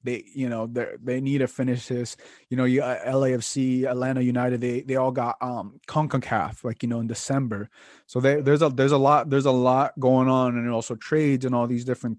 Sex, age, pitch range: male, 20-39, 120-140 Hz